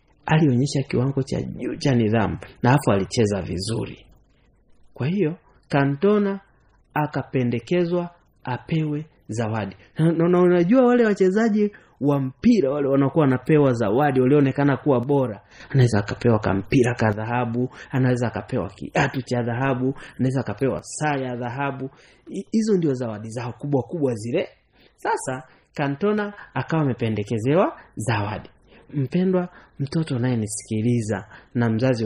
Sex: male